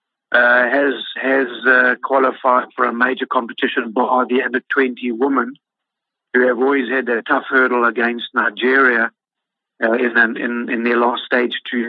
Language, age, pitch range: English, 50-69, 120-140 Hz